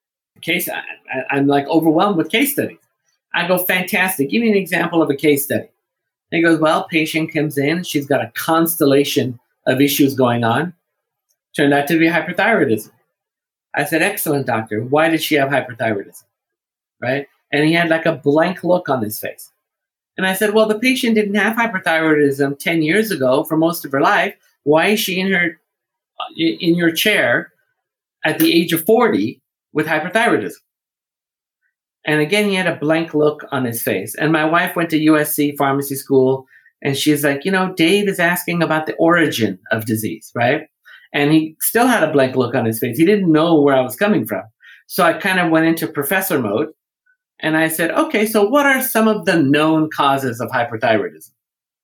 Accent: American